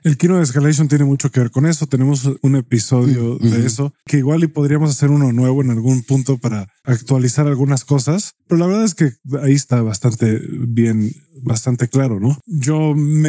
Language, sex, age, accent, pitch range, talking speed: Spanish, male, 20-39, Mexican, 125-150 Hz, 190 wpm